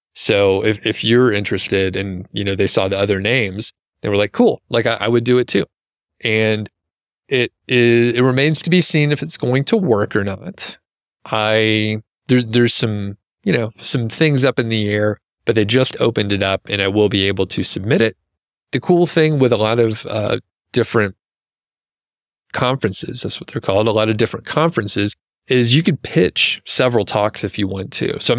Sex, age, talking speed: male, 30-49, 205 wpm